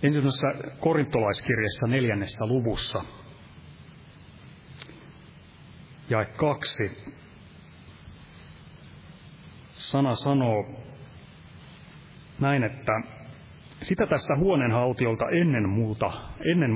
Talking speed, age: 55 wpm, 30-49